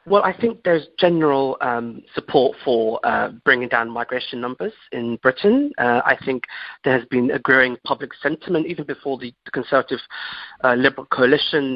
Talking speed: 170 wpm